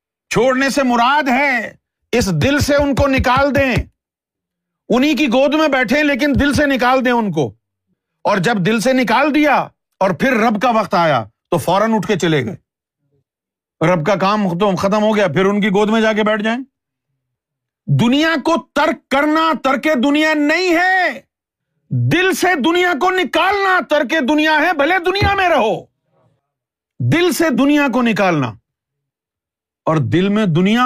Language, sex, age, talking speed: Urdu, male, 50-69, 165 wpm